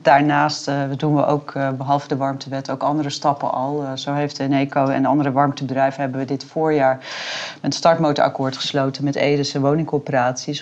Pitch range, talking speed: 135-155 Hz, 155 wpm